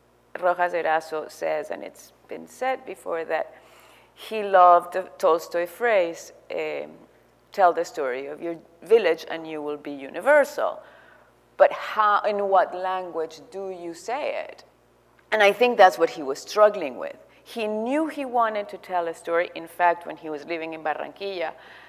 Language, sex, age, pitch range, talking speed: English, female, 40-59, 145-200 Hz, 160 wpm